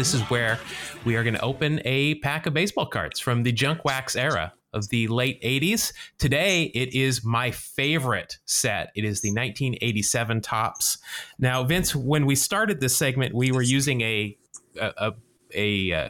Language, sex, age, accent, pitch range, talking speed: English, male, 30-49, American, 115-150 Hz, 175 wpm